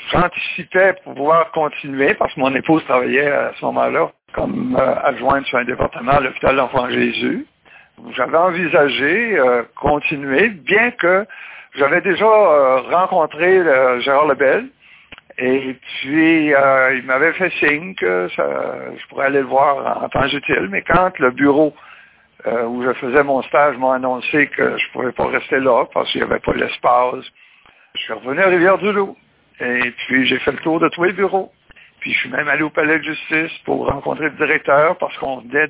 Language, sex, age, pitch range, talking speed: French, male, 60-79, 130-160 Hz, 180 wpm